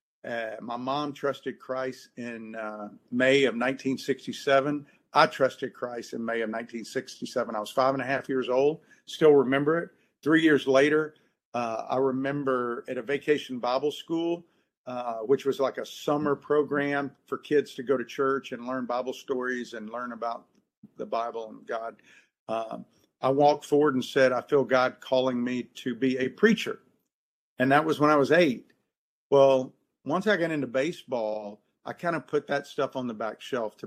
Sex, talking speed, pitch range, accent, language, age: male, 180 wpm, 120-145 Hz, American, English, 50-69